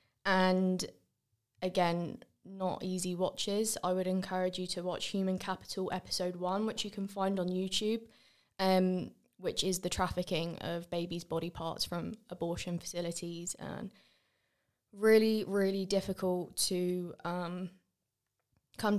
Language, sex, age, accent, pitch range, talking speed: English, female, 20-39, British, 175-195 Hz, 125 wpm